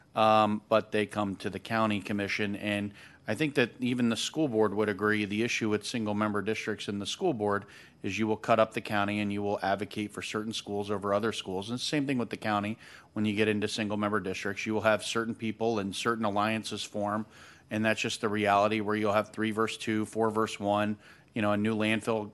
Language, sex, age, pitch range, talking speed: English, male, 40-59, 105-115 Hz, 235 wpm